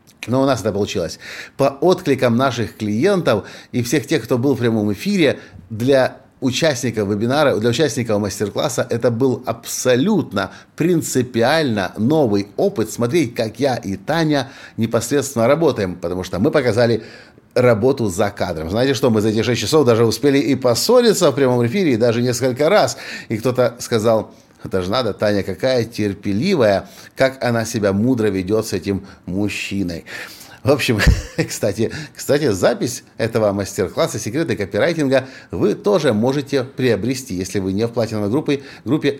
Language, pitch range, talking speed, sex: Russian, 105-135 Hz, 150 wpm, male